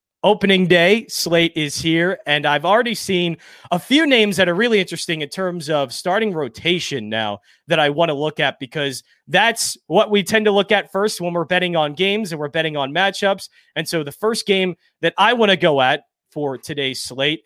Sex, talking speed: male, 210 wpm